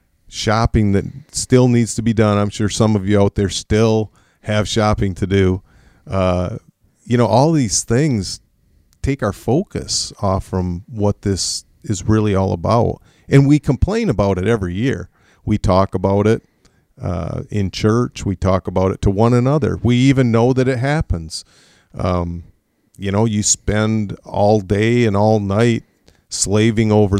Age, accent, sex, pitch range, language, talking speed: 40-59, American, male, 100-115 Hz, English, 165 wpm